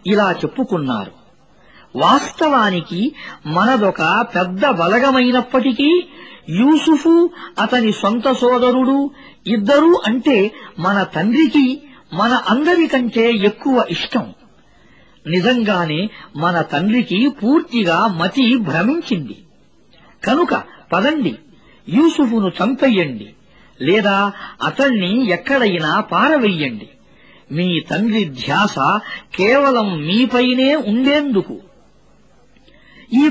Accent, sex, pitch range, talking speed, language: Indian, female, 190-270 Hz, 65 wpm, English